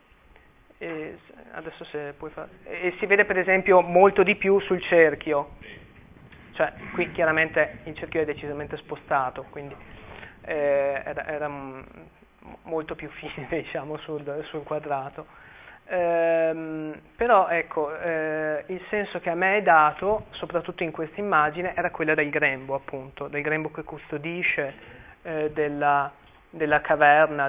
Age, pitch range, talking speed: 20-39, 150-170 Hz, 135 wpm